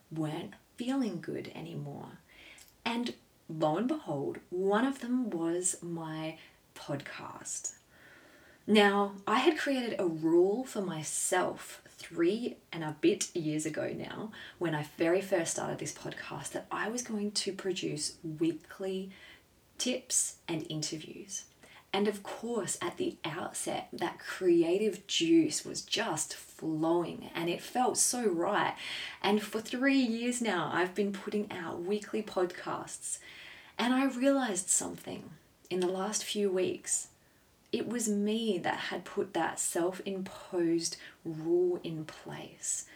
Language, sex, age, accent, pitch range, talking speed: English, female, 20-39, Australian, 165-210 Hz, 130 wpm